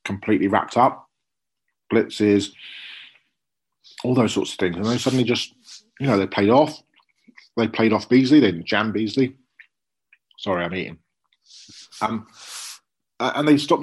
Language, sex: English, male